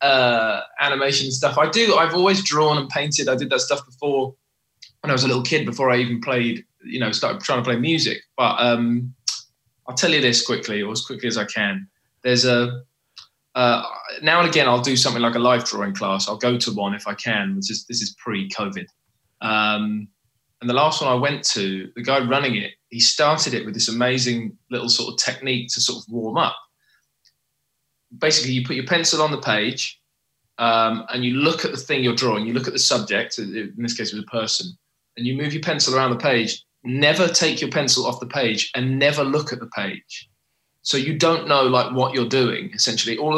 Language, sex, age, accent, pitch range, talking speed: English, male, 20-39, British, 115-145 Hz, 220 wpm